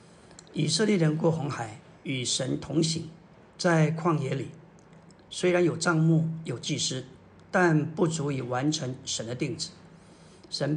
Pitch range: 150-175 Hz